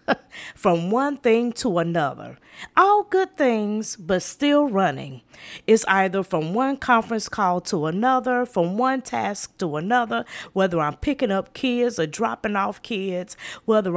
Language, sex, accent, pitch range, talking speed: English, female, American, 180-230 Hz, 145 wpm